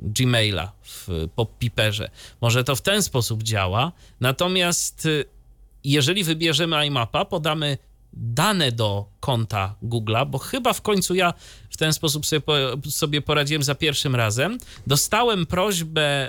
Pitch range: 120-175 Hz